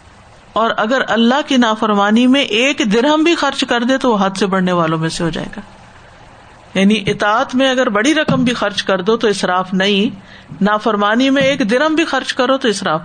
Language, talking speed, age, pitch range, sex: Urdu, 205 wpm, 50-69, 180-230 Hz, female